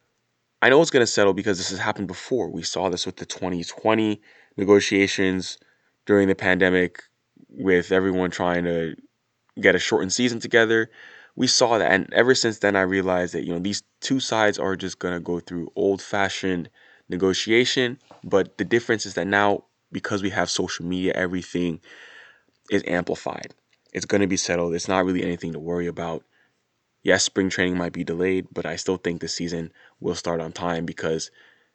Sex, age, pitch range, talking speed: male, 20-39, 85-100 Hz, 185 wpm